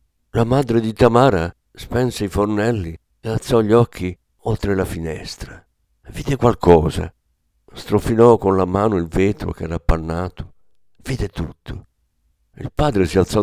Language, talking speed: Italian, 140 wpm